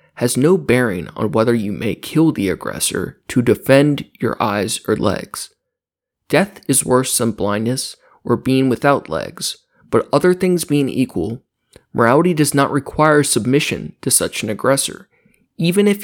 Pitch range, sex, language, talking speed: 120-150 Hz, male, English, 155 wpm